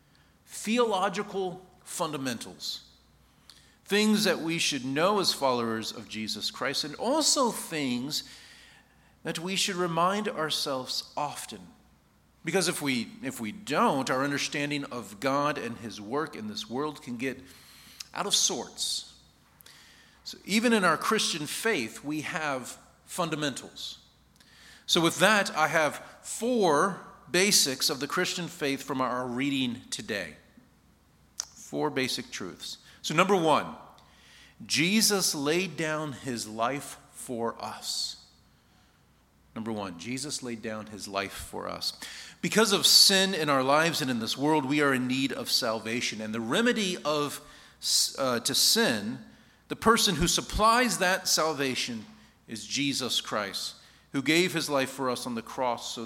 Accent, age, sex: American, 40-59, male